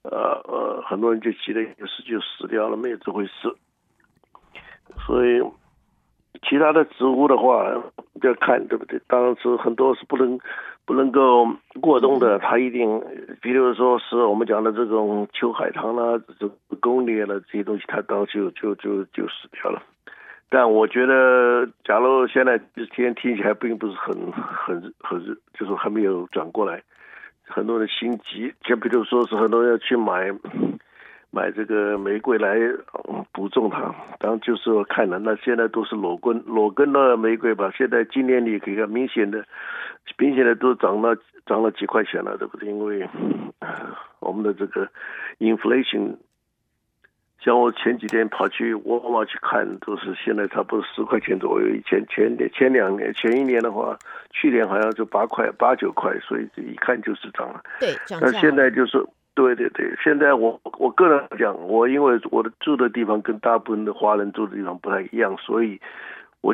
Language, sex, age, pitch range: Chinese, male, 60-79, 110-130 Hz